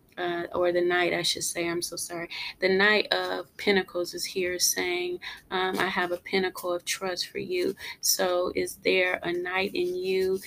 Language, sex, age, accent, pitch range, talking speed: English, female, 20-39, American, 180-195 Hz, 190 wpm